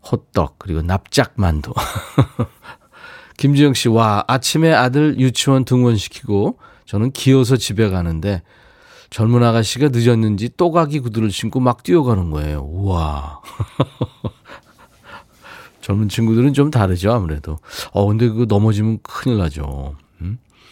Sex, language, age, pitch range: male, Korean, 40-59, 100-135 Hz